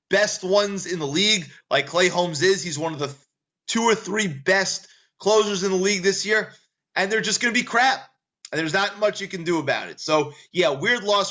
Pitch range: 145-190 Hz